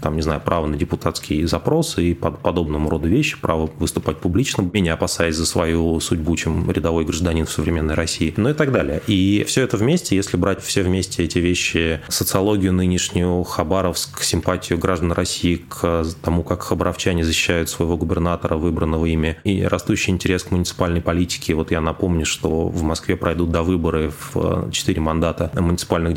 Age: 30-49